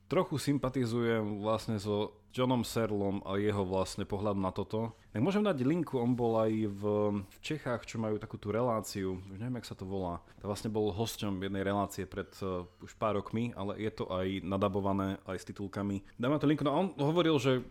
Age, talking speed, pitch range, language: 30-49, 200 wpm, 100-125 Hz, Slovak